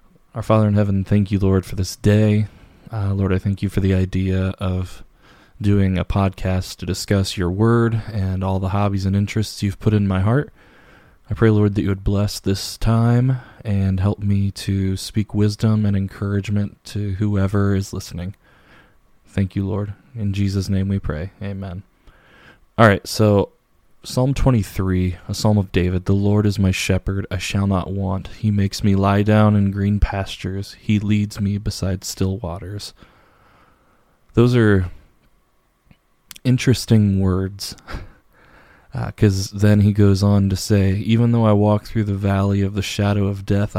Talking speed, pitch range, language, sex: 170 wpm, 95-105 Hz, English, male